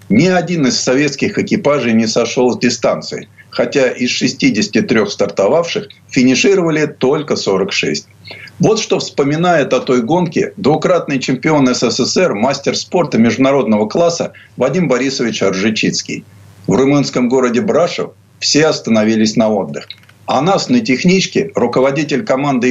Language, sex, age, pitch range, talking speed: Russian, male, 50-69, 120-165 Hz, 120 wpm